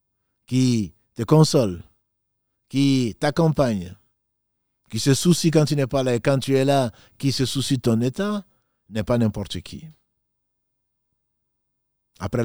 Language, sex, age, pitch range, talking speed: French, male, 50-69, 100-125 Hz, 140 wpm